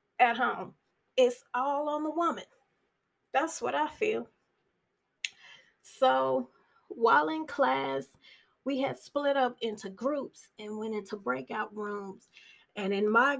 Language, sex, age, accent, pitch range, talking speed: English, female, 30-49, American, 205-250 Hz, 130 wpm